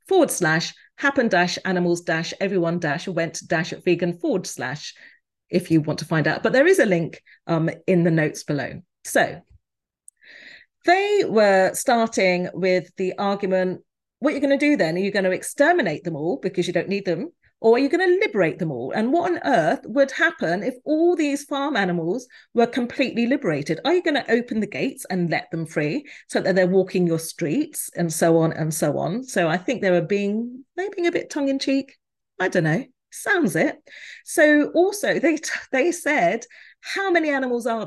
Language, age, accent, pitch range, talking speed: English, 40-59, British, 170-255 Hz, 200 wpm